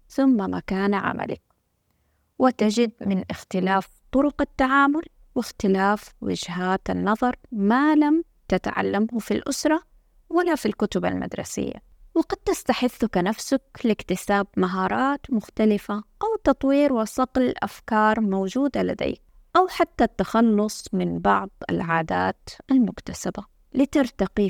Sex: female